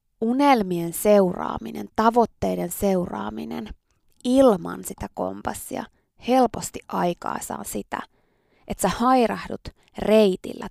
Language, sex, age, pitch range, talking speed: Finnish, female, 20-39, 180-255 Hz, 85 wpm